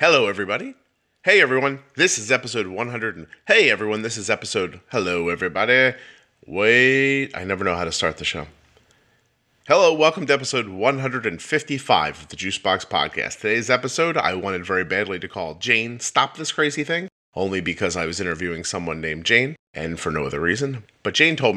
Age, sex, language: 30-49, male, English